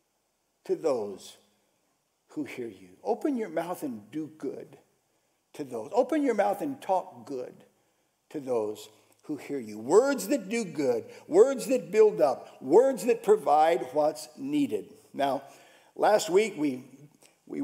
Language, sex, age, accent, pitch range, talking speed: English, male, 60-79, American, 175-290 Hz, 145 wpm